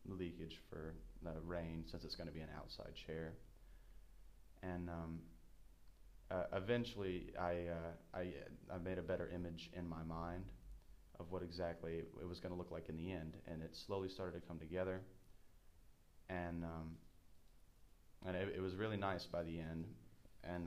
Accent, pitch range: American, 85-95 Hz